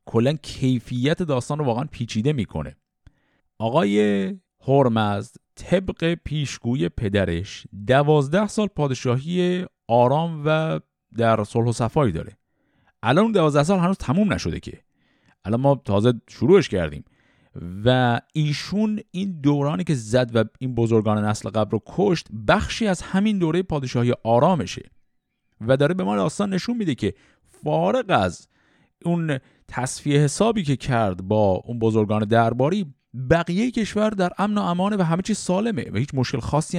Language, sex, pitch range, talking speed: Persian, male, 115-180 Hz, 140 wpm